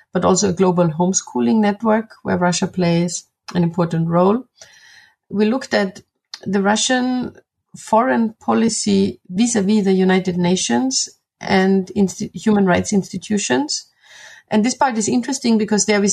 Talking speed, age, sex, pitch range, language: 130 wpm, 30-49, female, 180-215 Hz, English